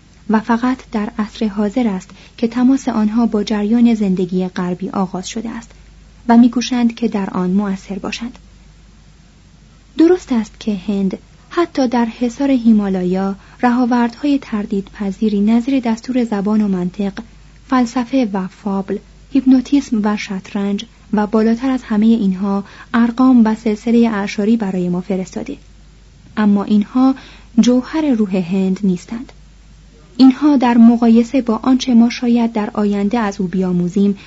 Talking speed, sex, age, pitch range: 130 wpm, female, 30-49, 200-240 Hz